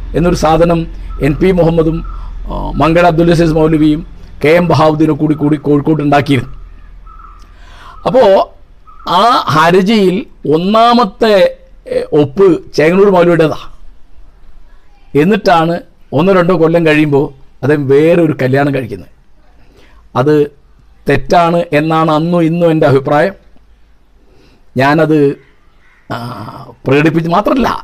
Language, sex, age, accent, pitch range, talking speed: Malayalam, male, 50-69, native, 150-185 Hz, 90 wpm